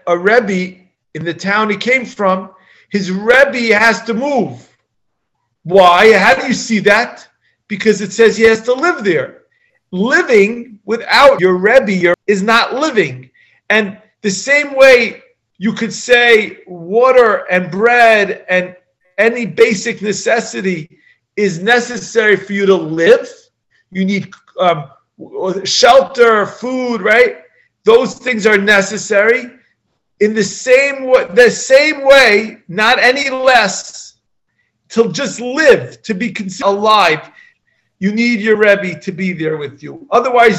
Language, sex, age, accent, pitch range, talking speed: English, male, 40-59, American, 195-250 Hz, 135 wpm